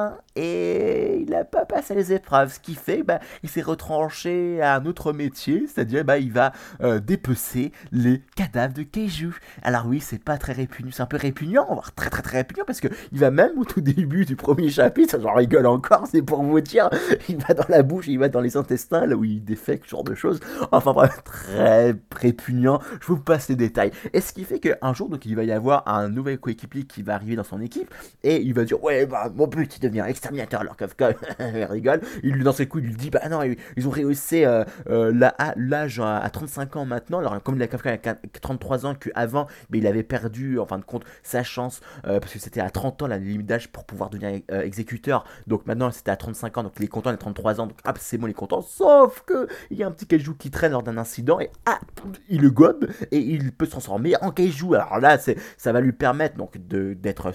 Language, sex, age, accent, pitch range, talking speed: French, male, 30-49, French, 115-155 Hz, 245 wpm